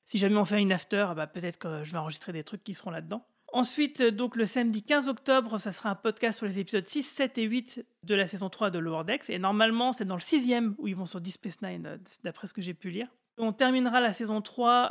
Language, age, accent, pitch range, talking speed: French, 30-49, French, 190-230 Hz, 260 wpm